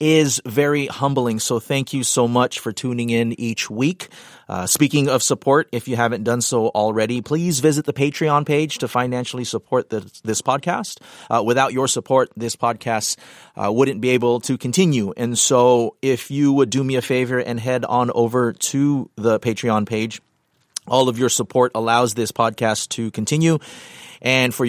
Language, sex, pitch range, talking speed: English, male, 110-130 Hz, 175 wpm